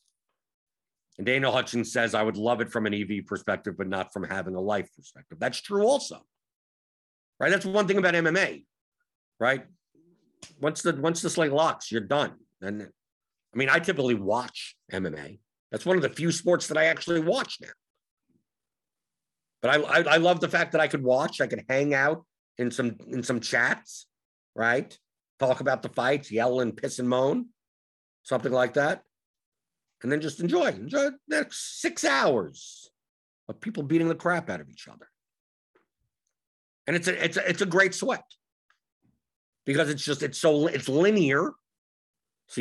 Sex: male